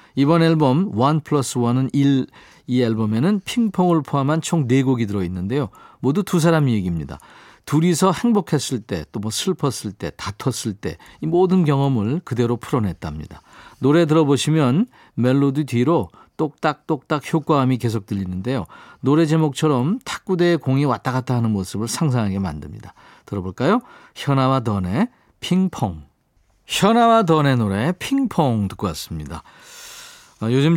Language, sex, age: Korean, male, 40-59